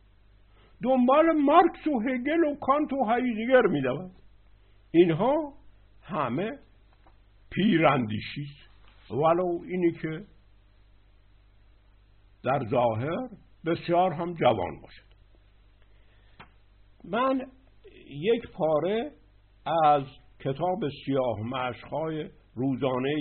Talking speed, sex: 75 wpm, male